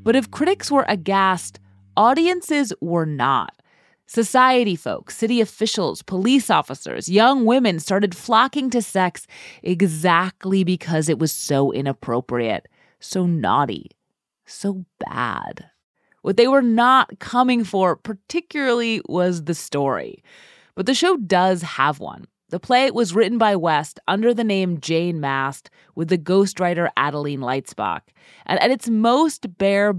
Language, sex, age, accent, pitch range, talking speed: English, female, 30-49, American, 155-225 Hz, 135 wpm